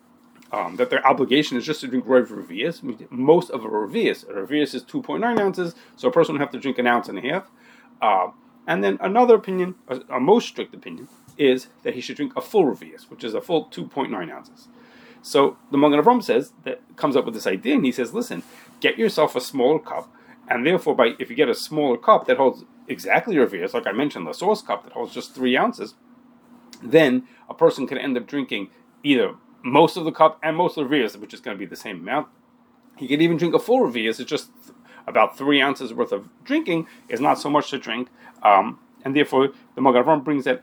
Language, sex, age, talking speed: English, male, 30-49, 230 wpm